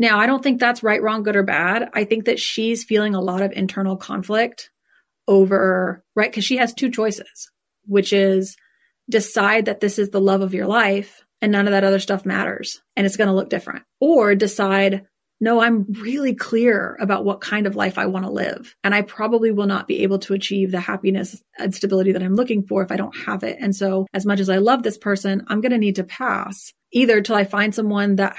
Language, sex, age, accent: English, female, 30-49, American